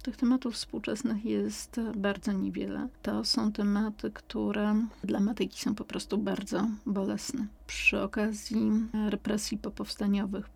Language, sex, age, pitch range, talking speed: Polish, female, 30-49, 205-235 Hz, 120 wpm